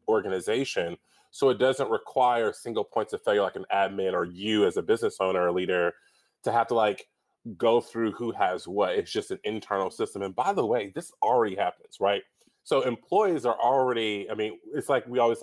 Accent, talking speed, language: American, 200 wpm, English